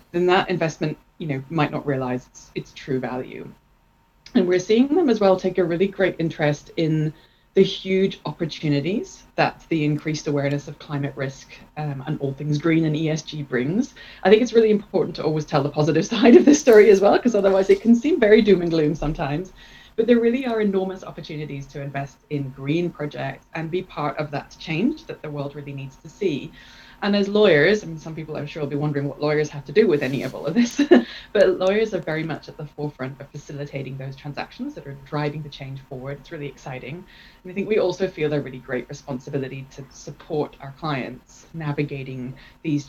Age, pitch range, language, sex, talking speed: 20-39, 140-185 Hz, English, female, 210 wpm